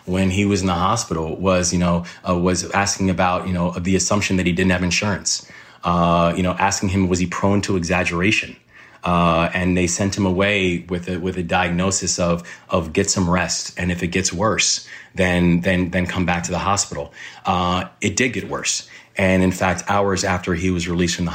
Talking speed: 215 wpm